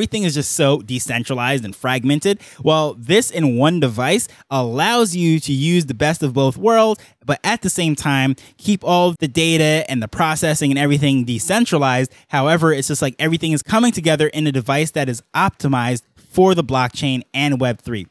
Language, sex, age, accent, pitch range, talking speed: English, male, 20-39, American, 130-175 Hz, 185 wpm